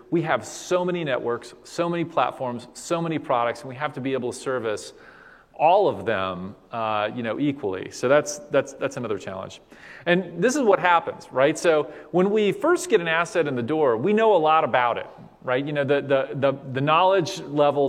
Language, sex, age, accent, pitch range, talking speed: English, male, 30-49, American, 125-175 Hz, 210 wpm